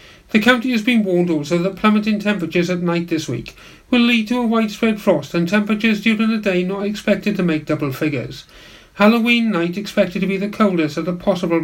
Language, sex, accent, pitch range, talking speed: English, male, British, 160-220 Hz, 205 wpm